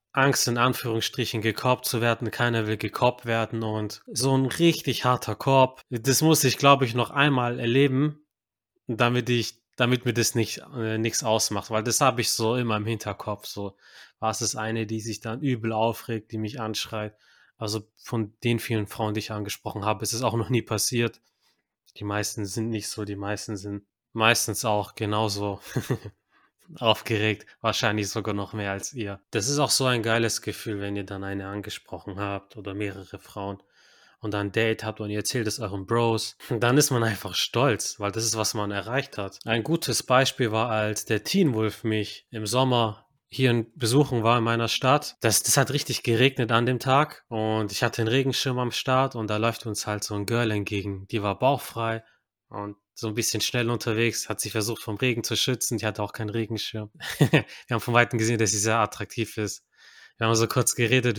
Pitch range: 105-120 Hz